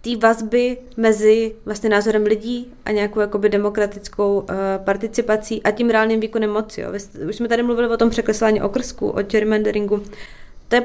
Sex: female